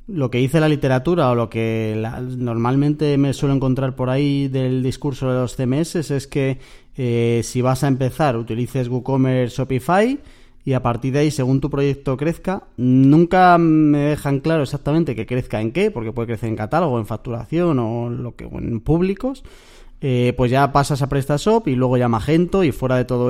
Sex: male